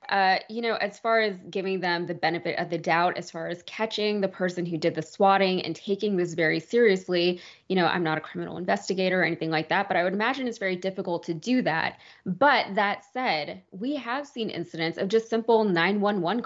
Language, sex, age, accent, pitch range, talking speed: English, female, 20-39, American, 175-220 Hz, 220 wpm